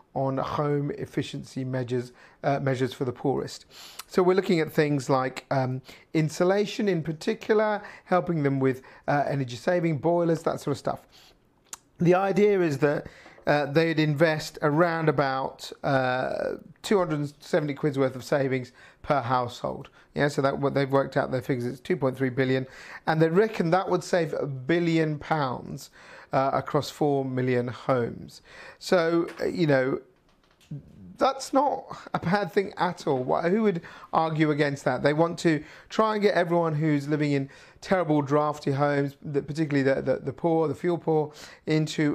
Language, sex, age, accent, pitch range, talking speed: English, male, 40-59, British, 135-175 Hz, 160 wpm